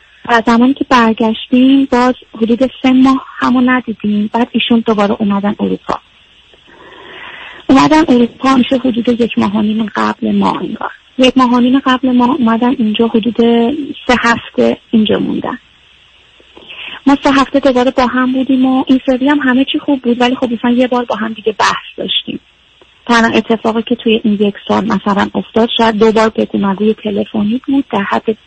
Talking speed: 150 wpm